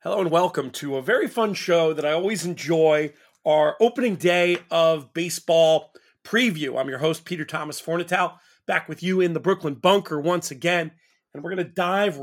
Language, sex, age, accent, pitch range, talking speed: English, male, 40-59, American, 145-175 Hz, 185 wpm